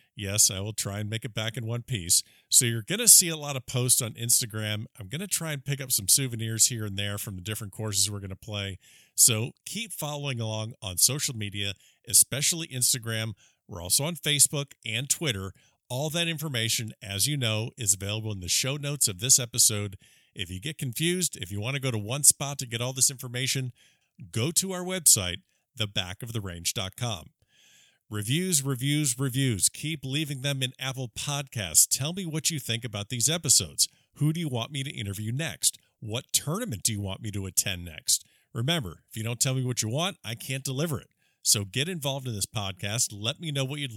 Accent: American